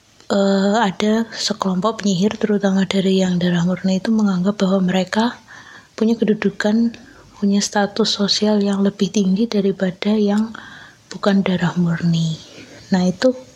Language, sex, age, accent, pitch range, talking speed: Indonesian, female, 20-39, native, 180-205 Hz, 125 wpm